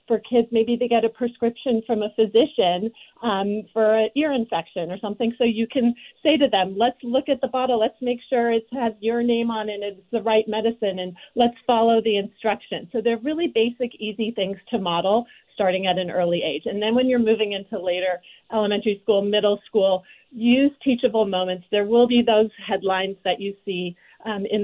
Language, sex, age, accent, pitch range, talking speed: English, female, 40-59, American, 190-235 Hz, 205 wpm